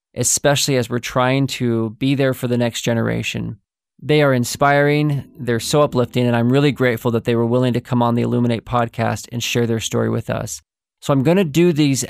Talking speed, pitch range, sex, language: 210 wpm, 120-140 Hz, male, English